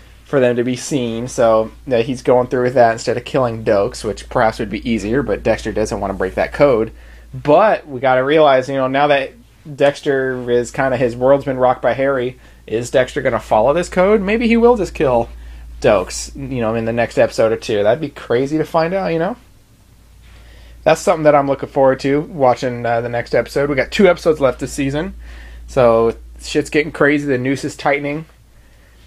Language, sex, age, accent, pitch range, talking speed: English, male, 30-49, American, 115-155 Hz, 215 wpm